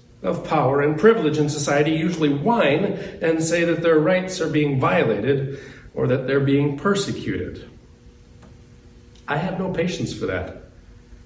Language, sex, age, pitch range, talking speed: English, male, 40-59, 135-200 Hz, 145 wpm